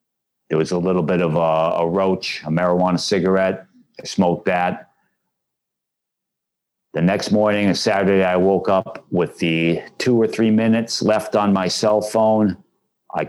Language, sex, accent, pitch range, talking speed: English, male, American, 85-105 Hz, 160 wpm